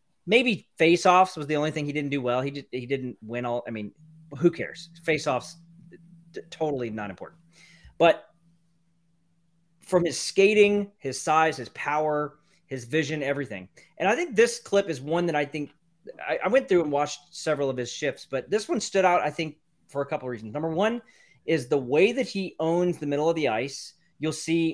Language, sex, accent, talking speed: English, male, American, 205 wpm